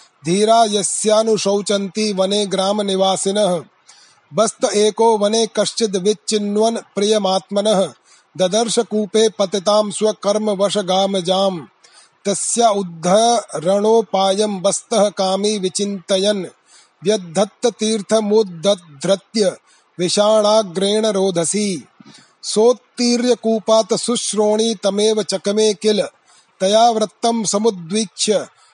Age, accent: 30-49, native